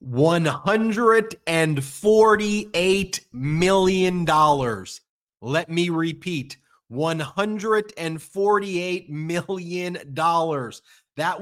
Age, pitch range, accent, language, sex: 30-49, 165-195 Hz, American, English, male